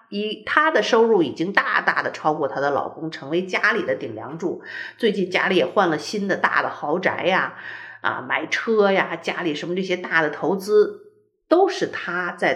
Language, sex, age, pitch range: Chinese, female, 50-69, 170-240 Hz